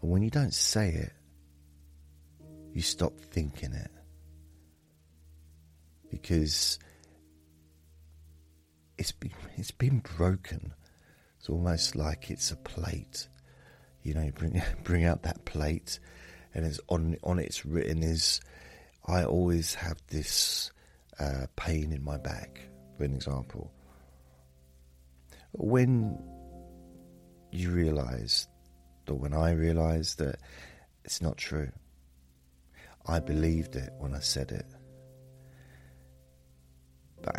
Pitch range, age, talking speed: 70-85 Hz, 40-59, 110 wpm